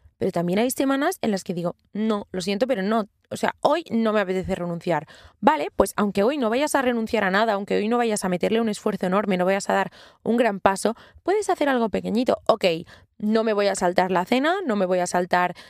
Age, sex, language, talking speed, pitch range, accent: 20-39, female, Spanish, 240 wpm, 180-225 Hz, Spanish